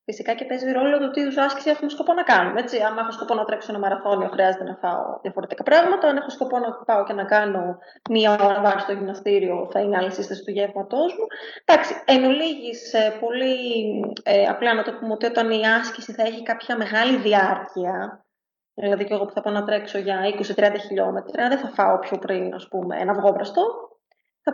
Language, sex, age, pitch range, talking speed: Greek, female, 20-39, 205-290 Hz, 205 wpm